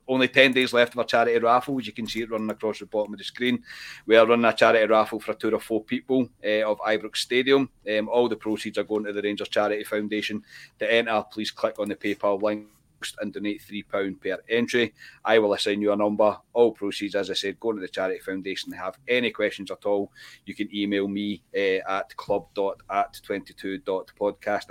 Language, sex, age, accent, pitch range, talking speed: English, male, 30-49, British, 105-130 Hz, 215 wpm